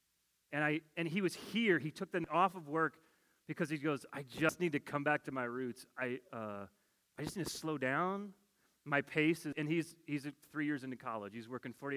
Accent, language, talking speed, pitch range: American, English, 225 wpm, 145-195 Hz